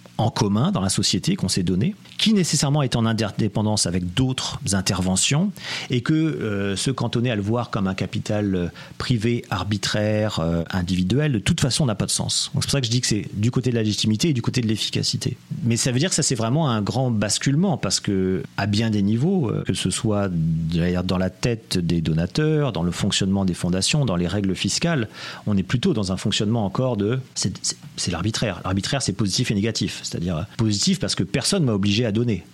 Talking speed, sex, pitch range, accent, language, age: 215 wpm, male, 100-135 Hz, French, French, 40-59